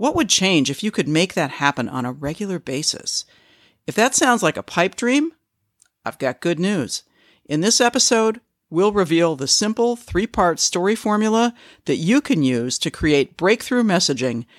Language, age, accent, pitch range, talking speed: English, 50-69, American, 145-220 Hz, 175 wpm